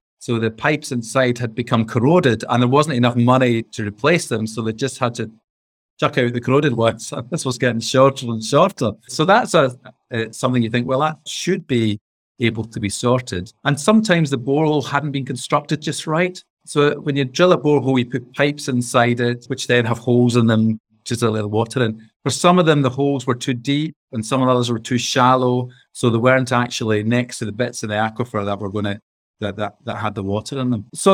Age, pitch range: 30-49, 115-140 Hz